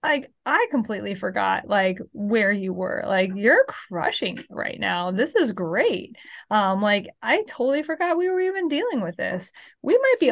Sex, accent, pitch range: female, American, 190-255 Hz